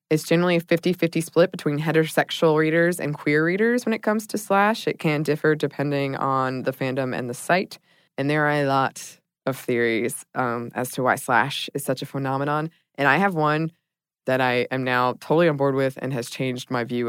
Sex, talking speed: female, 205 wpm